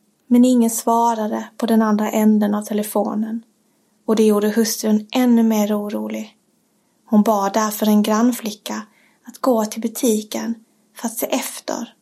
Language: English